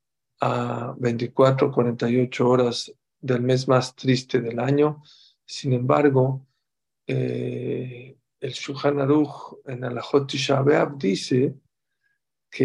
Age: 50-69